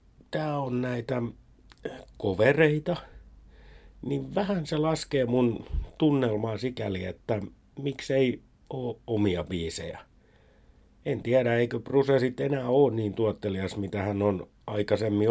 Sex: male